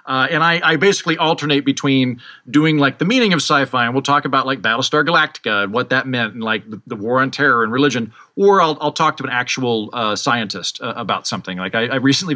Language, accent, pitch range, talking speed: English, American, 125-150 Hz, 240 wpm